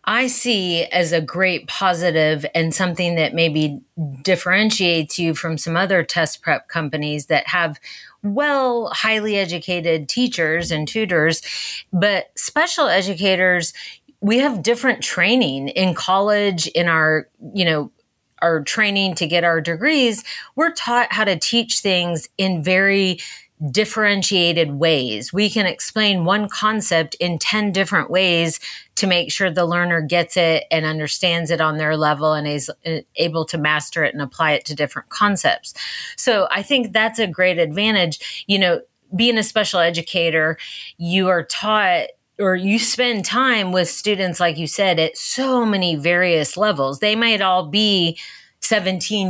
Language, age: English, 30-49